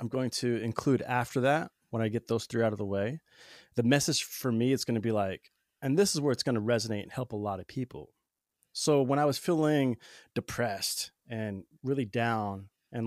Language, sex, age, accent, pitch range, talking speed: English, male, 20-39, American, 110-130 Hz, 220 wpm